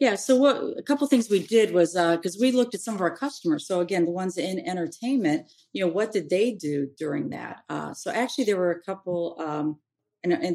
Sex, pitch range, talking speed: female, 150-180 Hz, 240 wpm